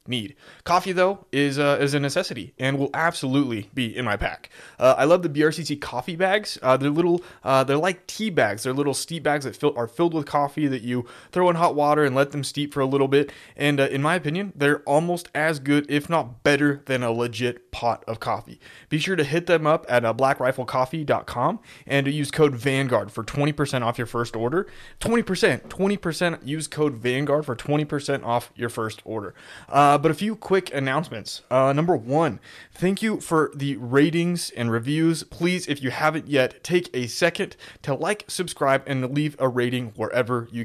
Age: 20-39